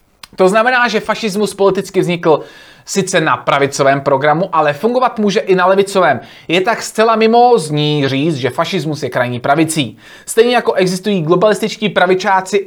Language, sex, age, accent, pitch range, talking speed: Czech, male, 30-49, native, 165-230 Hz, 145 wpm